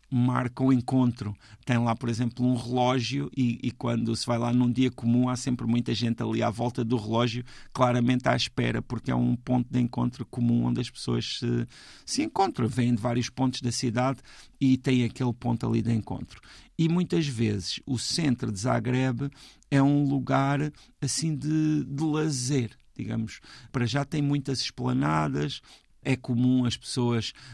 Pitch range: 115-130 Hz